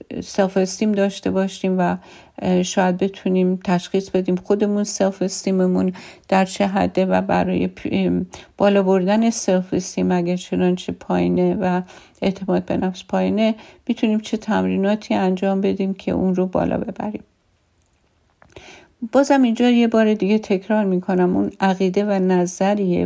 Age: 50-69